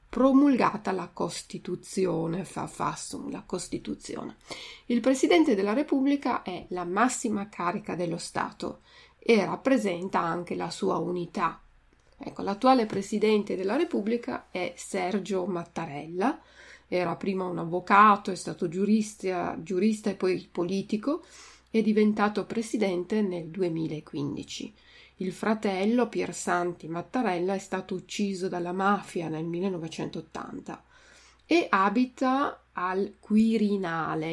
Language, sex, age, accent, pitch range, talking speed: Italian, female, 30-49, native, 180-230 Hz, 110 wpm